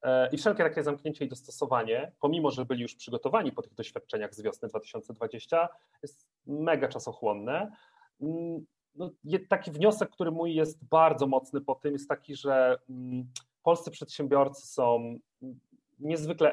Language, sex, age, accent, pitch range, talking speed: Polish, male, 40-59, native, 130-155 Hz, 130 wpm